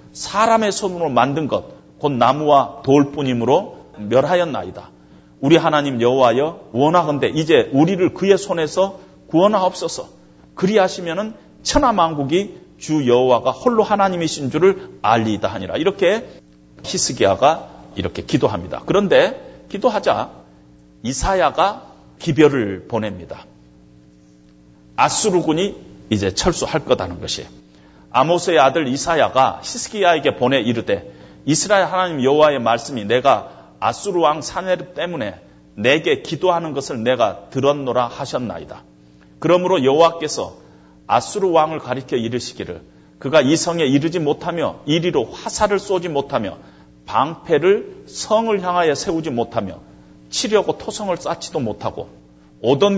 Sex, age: male, 40-59